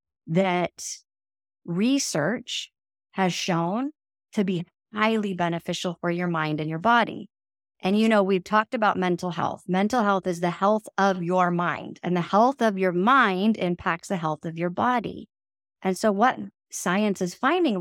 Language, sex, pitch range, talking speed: English, female, 180-225 Hz, 160 wpm